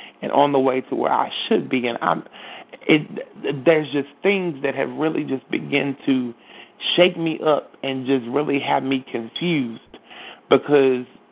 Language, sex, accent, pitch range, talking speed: English, male, American, 125-140 Hz, 165 wpm